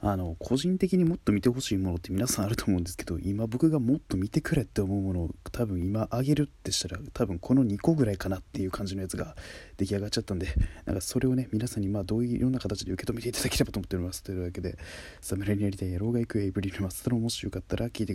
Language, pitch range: Japanese, 95-125 Hz